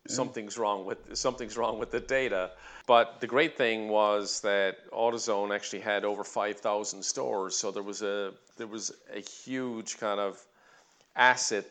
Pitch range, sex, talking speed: 100-115 Hz, male, 165 wpm